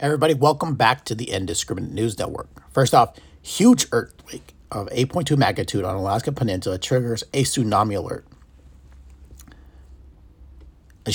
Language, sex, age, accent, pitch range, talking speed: English, male, 40-59, American, 90-125 Hz, 125 wpm